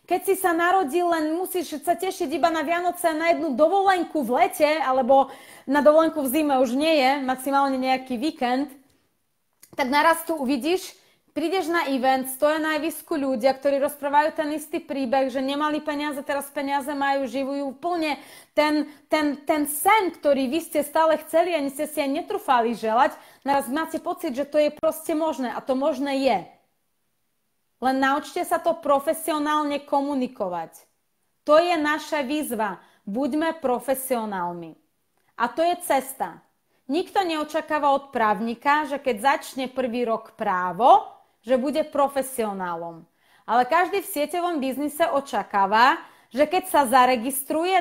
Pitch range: 265-320 Hz